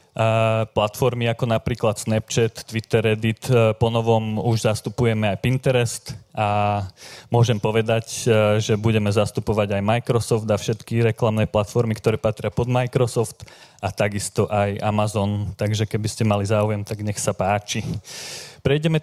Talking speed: 130 wpm